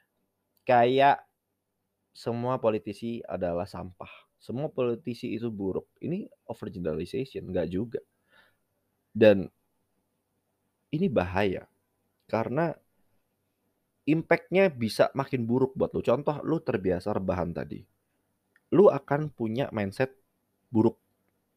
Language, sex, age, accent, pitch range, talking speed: Indonesian, male, 20-39, native, 95-130 Hz, 90 wpm